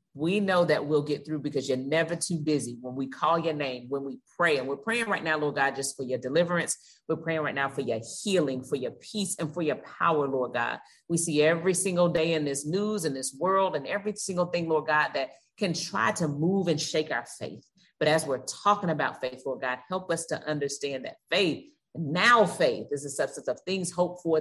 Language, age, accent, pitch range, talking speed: English, 30-49, American, 135-170 Hz, 235 wpm